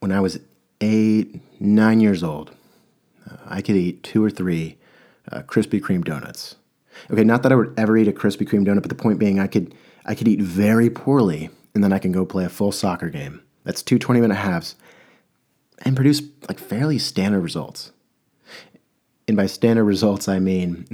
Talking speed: 190 wpm